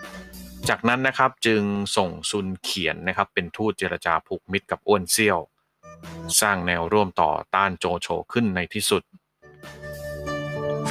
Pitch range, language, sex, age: 85-115 Hz, Thai, male, 30-49